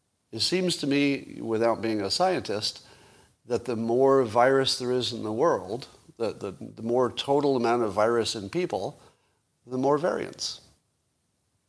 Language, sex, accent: English, male, American